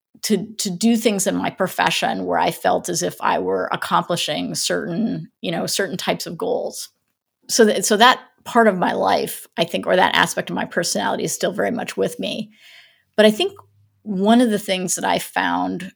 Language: English